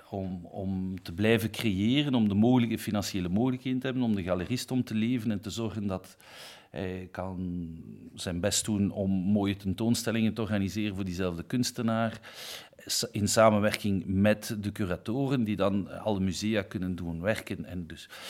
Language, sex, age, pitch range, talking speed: French, male, 50-69, 95-115 Hz, 155 wpm